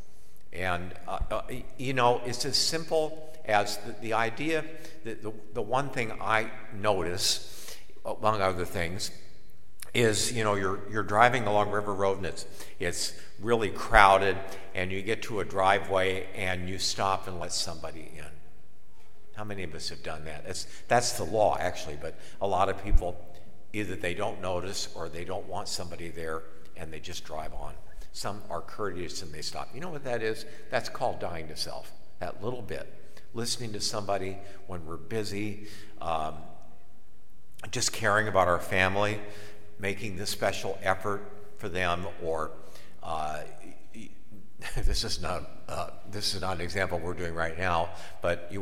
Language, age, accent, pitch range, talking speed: English, 50-69, American, 85-105 Hz, 165 wpm